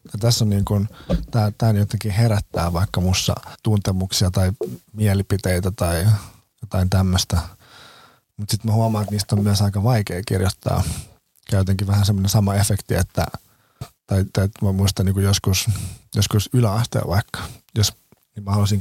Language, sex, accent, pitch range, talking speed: Finnish, male, native, 95-110 Hz, 145 wpm